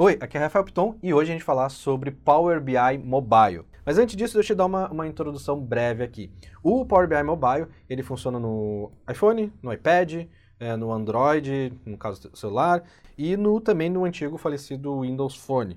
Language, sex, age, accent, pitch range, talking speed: Portuguese, male, 20-39, Brazilian, 110-160 Hz, 190 wpm